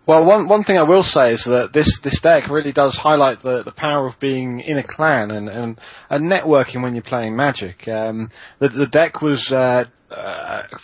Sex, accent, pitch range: male, British, 115-140 Hz